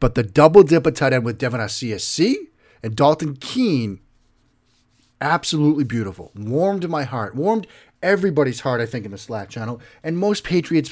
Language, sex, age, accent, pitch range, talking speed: English, male, 40-59, American, 120-150 Hz, 160 wpm